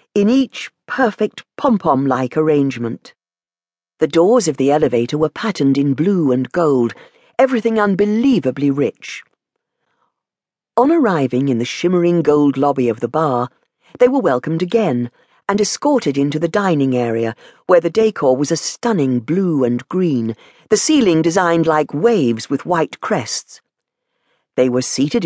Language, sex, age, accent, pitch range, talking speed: English, female, 50-69, British, 130-200 Hz, 140 wpm